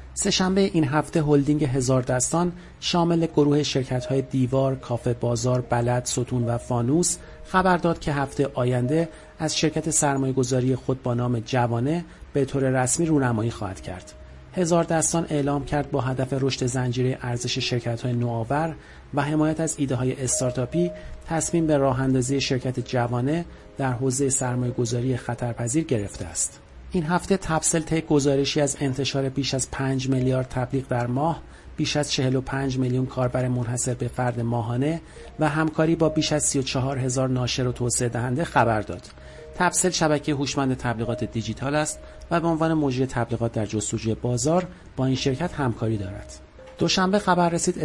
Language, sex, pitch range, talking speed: Persian, male, 125-155 Hz, 155 wpm